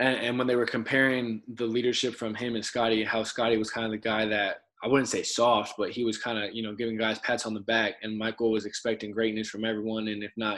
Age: 20-39